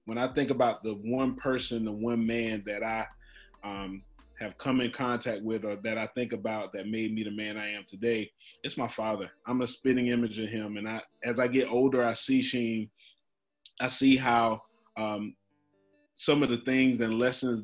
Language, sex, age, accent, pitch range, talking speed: English, male, 20-39, American, 105-125 Hz, 200 wpm